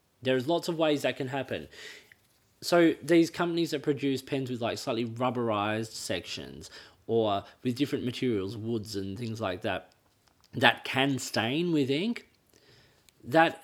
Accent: Australian